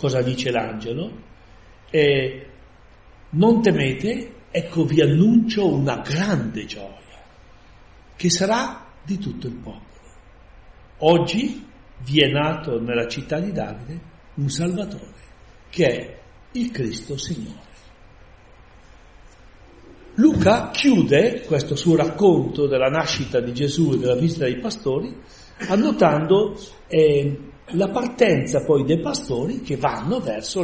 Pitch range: 120-170 Hz